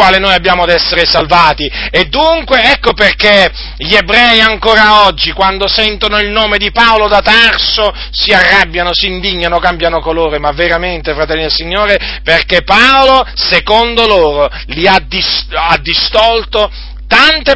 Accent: native